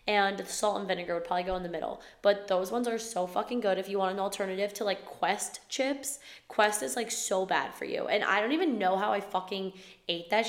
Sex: female